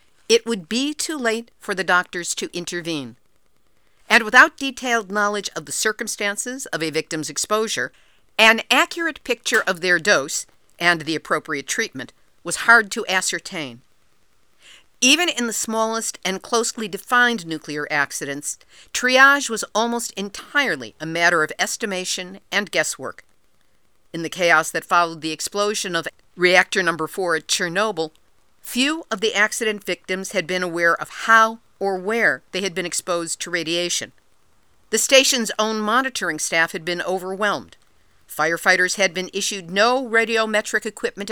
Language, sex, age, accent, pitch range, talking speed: English, female, 50-69, American, 170-225 Hz, 145 wpm